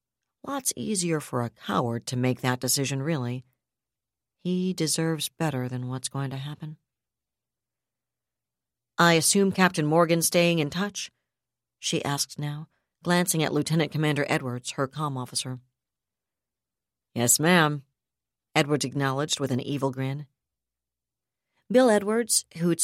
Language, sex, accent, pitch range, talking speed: English, female, American, 130-170 Hz, 125 wpm